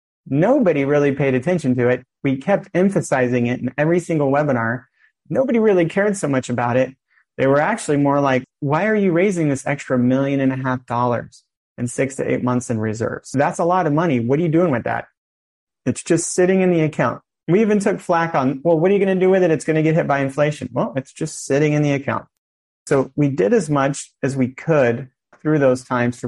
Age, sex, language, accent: 30-49, male, English, American